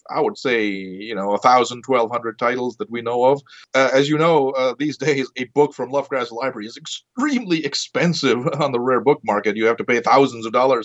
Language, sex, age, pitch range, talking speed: Swedish, male, 30-49, 110-150 Hz, 220 wpm